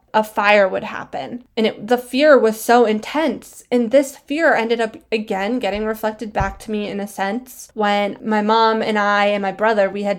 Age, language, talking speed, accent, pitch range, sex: 10-29, English, 200 wpm, American, 205-245 Hz, female